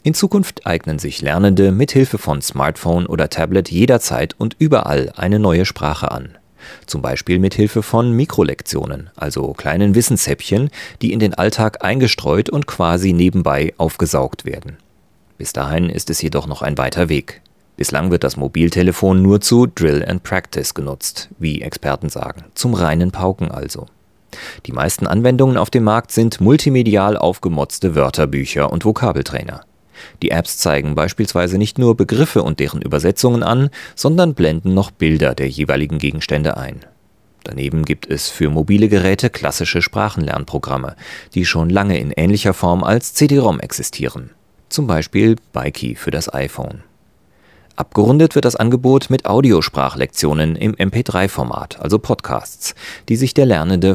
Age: 30-49